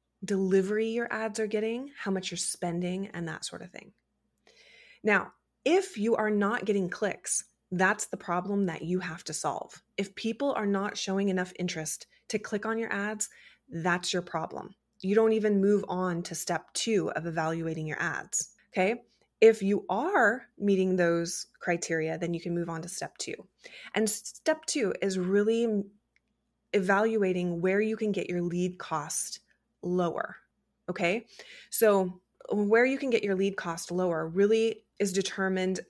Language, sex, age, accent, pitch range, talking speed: English, female, 20-39, American, 175-220 Hz, 165 wpm